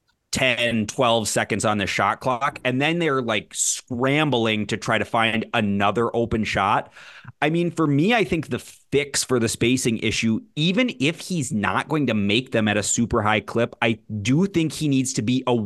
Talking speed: 200 wpm